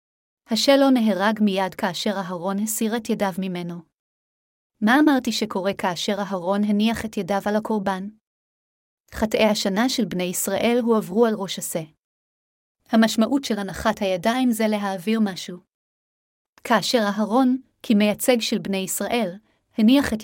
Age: 30-49